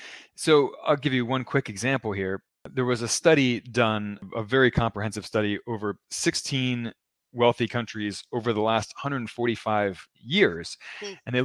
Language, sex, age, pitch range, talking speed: English, male, 30-49, 105-135 Hz, 145 wpm